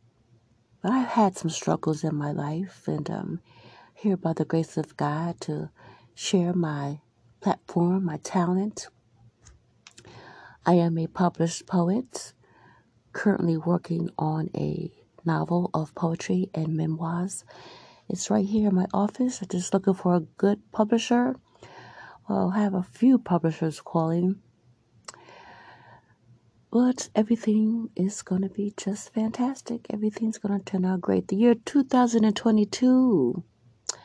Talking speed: 130 wpm